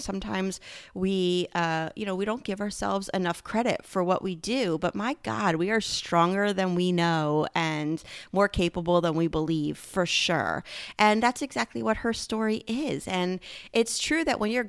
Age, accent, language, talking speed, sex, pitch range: 30-49, American, English, 185 wpm, female, 170-225 Hz